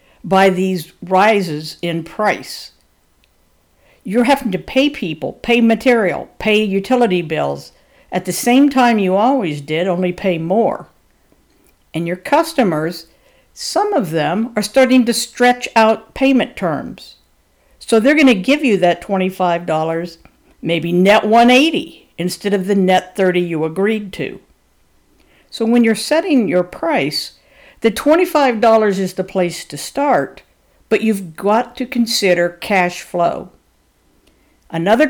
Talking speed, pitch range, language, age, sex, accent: 130 wpm, 175-235 Hz, English, 60-79, female, American